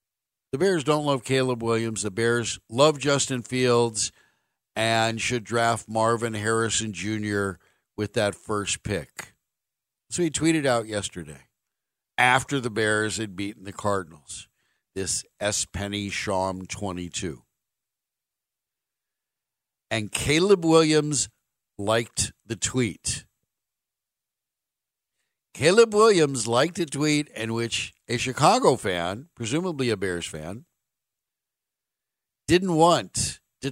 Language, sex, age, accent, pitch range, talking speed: English, male, 60-79, American, 105-135 Hz, 110 wpm